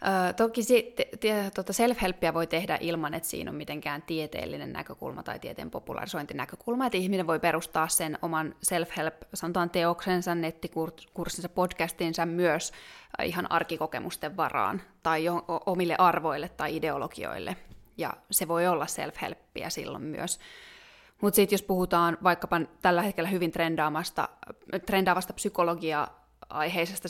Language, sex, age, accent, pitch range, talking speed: Finnish, female, 20-39, native, 165-200 Hz, 120 wpm